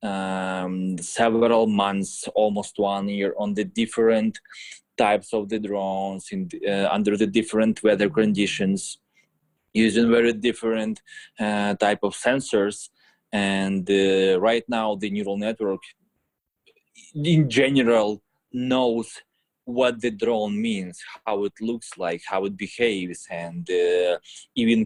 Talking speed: 120 wpm